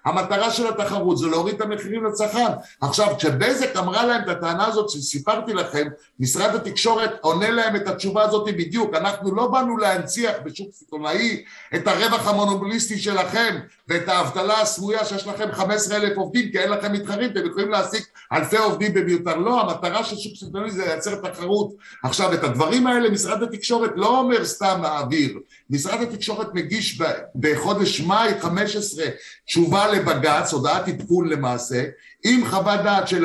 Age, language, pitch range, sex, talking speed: 60-79, Hebrew, 170-220 Hz, male, 135 wpm